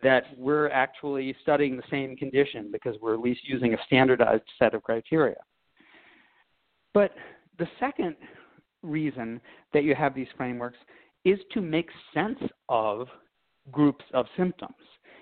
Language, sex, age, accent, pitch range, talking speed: English, male, 50-69, American, 120-160 Hz, 135 wpm